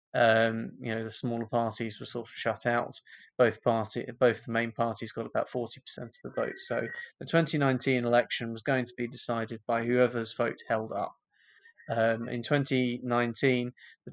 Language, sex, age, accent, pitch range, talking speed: English, male, 20-39, British, 115-125 Hz, 175 wpm